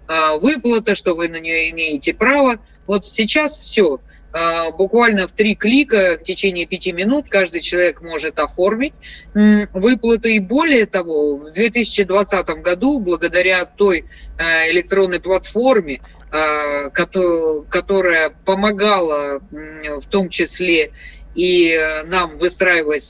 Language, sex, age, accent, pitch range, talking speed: Russian, female, 20-39, native, 165-210 Hz, 105 wpm